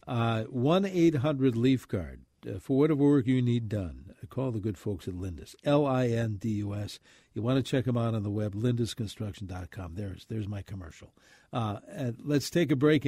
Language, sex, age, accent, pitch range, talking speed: English, male, 60-79, American, 105-145 Hz, 170 wpm